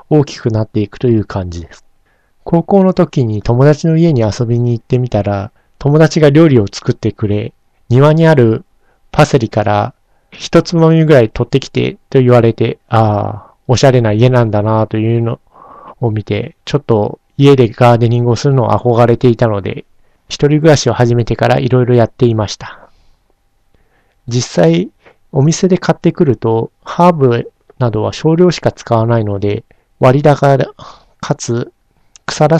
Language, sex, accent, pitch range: Japanese, male, native, 110-145 Hz